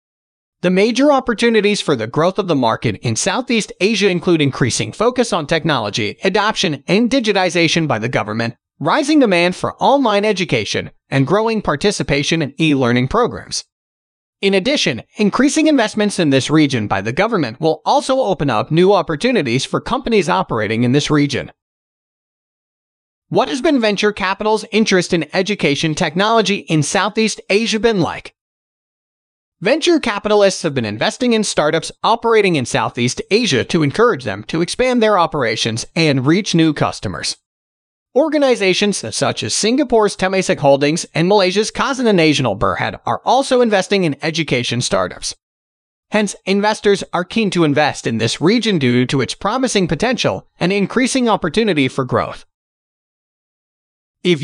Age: 30-49